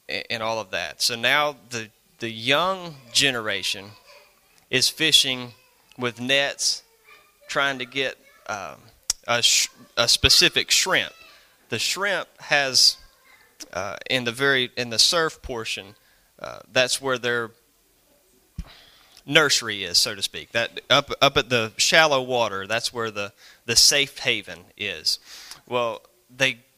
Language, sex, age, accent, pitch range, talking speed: English, male, 30-49, American, 115-140 Hz, 130 wpm